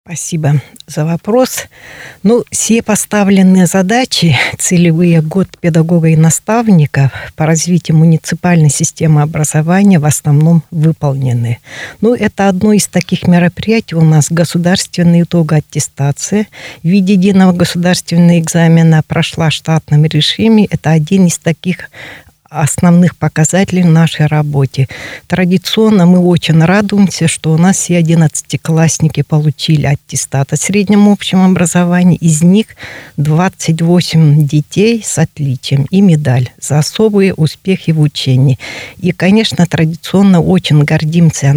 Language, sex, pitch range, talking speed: Russian, female, 155-185 Hz, 120 wpm